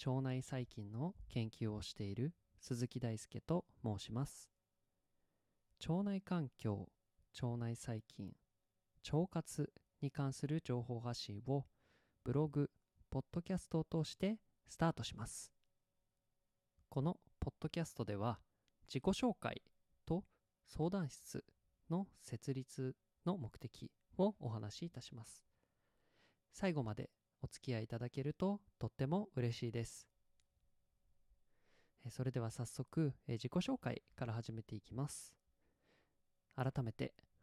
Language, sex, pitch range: Japanese, male, 110-155 Hz